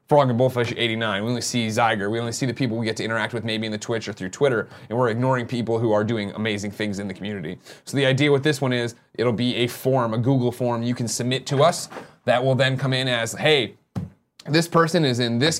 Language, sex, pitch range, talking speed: English, male, 110-130 Hz, 260 wpm